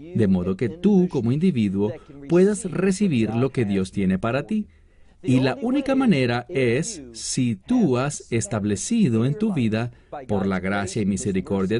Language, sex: English, male